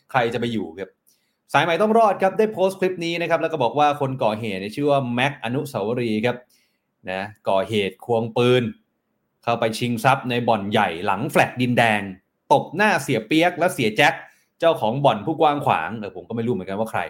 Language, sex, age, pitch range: Thai, male, 20-39, 135-195 Hz